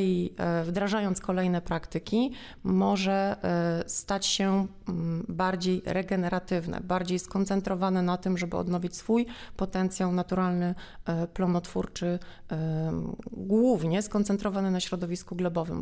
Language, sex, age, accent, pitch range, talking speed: Polish, female, 30-49, native, 170-195 Hz, 90 wpm